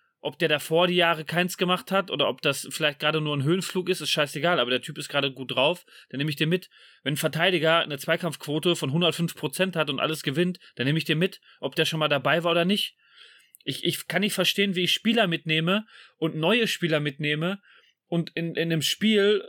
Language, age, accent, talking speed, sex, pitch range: German, 30-49, German, 225 wpm, male, 155-190 Hz